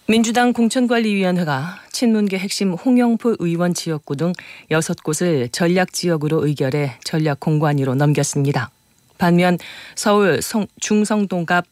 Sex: female